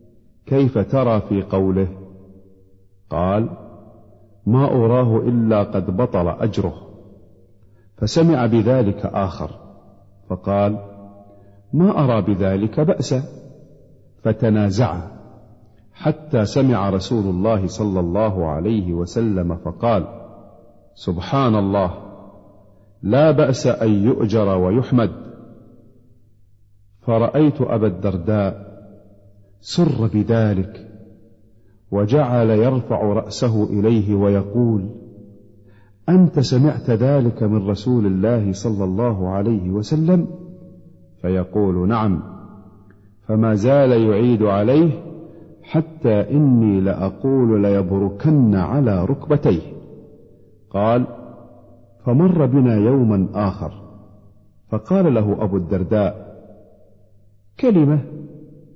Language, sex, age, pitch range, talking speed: Arabic, male, 50-69, 100-125 Hz, 80 wpm